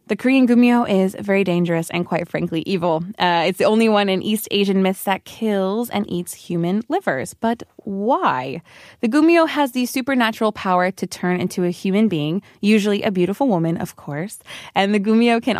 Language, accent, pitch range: Korean, American, 180-225 Hz